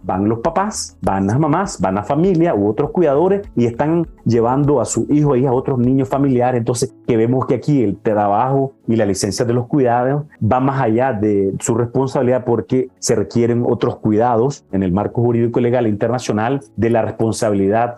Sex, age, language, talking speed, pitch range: male, 40-59, Spanish, 195 wpm, 110-135 Hz